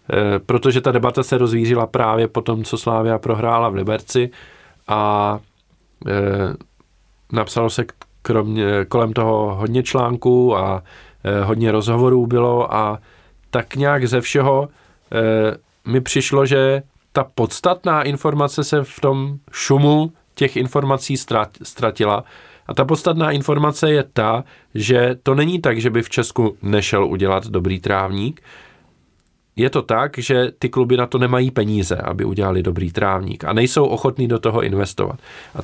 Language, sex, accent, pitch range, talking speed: Czech, male, native, 110-140 Hz, 135 wpm